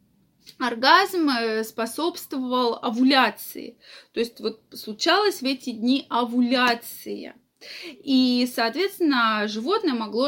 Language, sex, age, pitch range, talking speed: Russian, female, 20-39, 220-290 Hz, 90 wpm